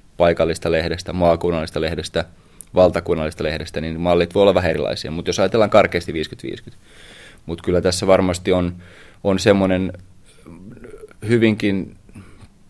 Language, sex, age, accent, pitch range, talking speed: Finnish, male, 20-39, native, 80-95 Hz, 120 wpm